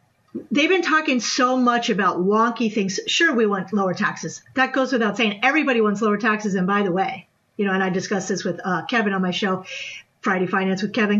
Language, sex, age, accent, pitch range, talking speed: English, female, 50-69, American, 210-270 Hz, 220 wpm